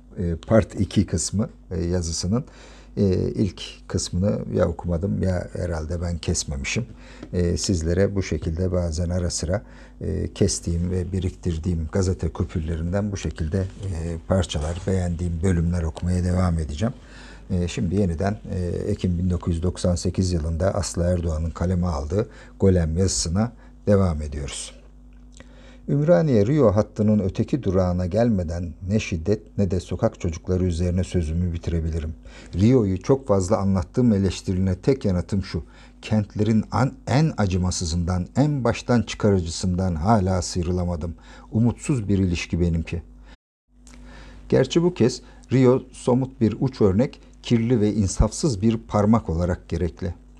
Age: 50-69